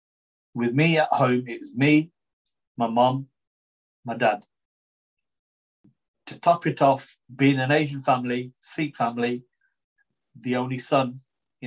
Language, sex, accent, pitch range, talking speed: English, male, British, 125-155 Hz, 130 wpm